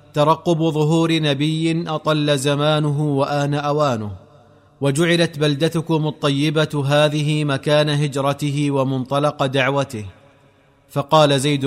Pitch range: 140-155 Hz